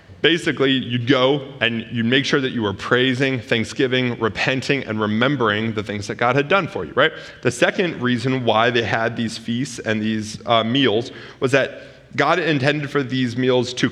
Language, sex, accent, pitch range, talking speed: English, male, American, 115-140 Hz, 190 wpm